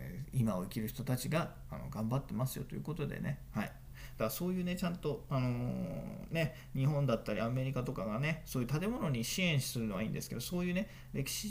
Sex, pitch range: male, 110-150 Hz